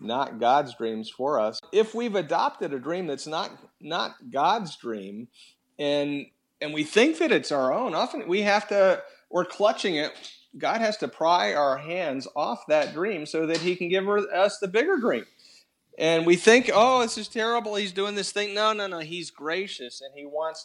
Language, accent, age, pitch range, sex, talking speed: English, American, 50-69, 135-180 Hz, male, 195 wpm